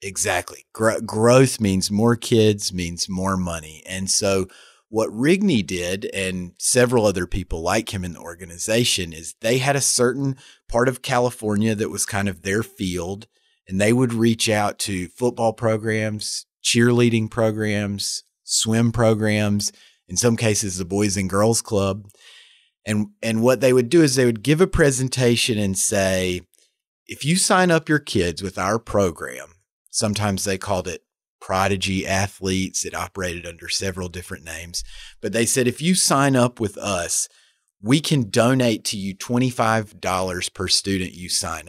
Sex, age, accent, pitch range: male, 30-49, American, 95-120 Hz